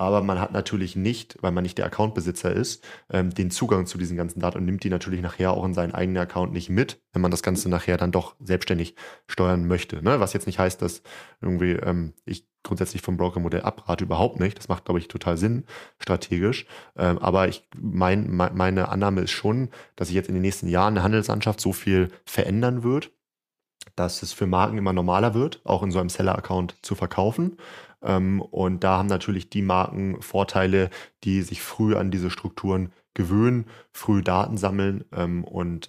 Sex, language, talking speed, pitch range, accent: male, German, 195 wpm, 90-100 Hz, German